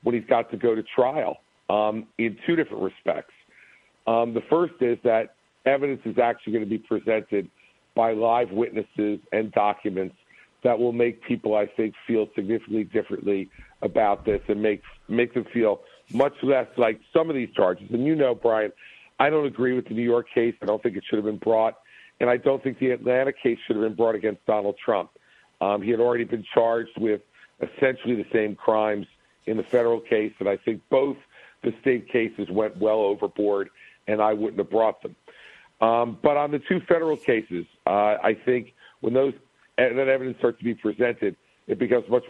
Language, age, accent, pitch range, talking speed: English, 50-69, American, 110-125 Hz, 195 wpm